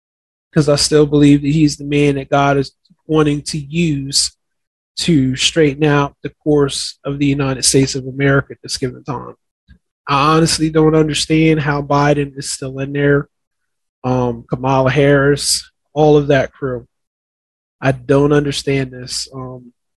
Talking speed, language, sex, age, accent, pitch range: 155 wpm, English, male, 20-39, American, 130-150 Hz